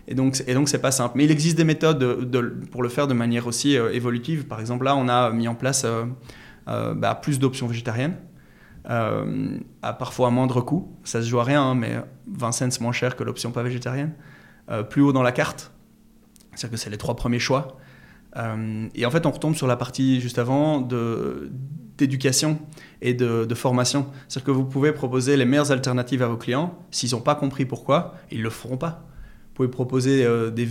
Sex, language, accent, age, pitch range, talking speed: male, French, French, 20-39, 120-140 Hz, 215 wpm